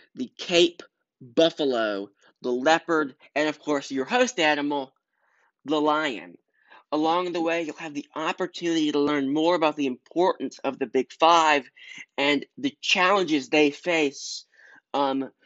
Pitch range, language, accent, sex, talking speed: 140-180 Hz, English, American, male, 140 wpm